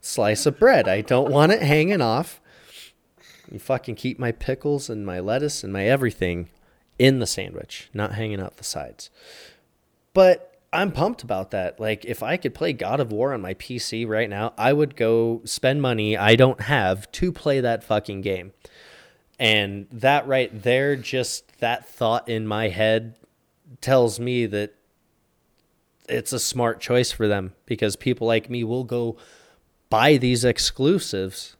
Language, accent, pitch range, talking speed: English, American, 105-130 Hz, 165 wpm